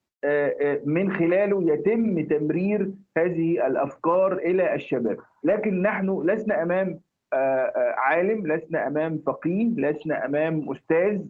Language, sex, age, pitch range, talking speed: Arabic, male, 50-69, 150-205 Hz, 100 wpm